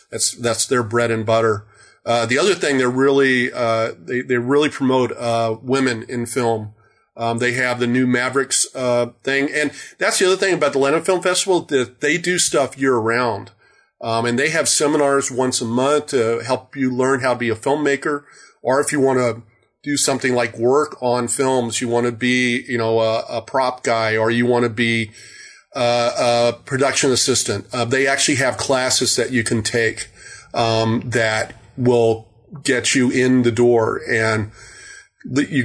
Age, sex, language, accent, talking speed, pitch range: 40-59, male, English, American, 190 wpm, 115-130 Hz